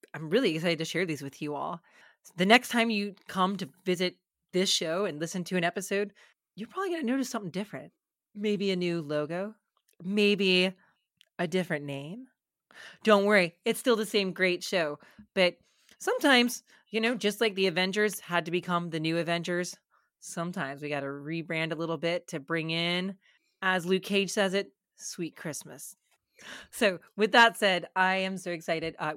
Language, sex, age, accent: English, female, 30-49, American